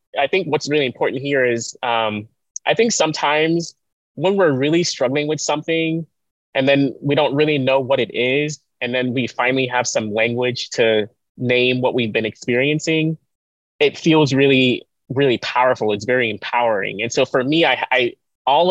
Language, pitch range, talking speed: English, 110-140 Hz, 175 wpm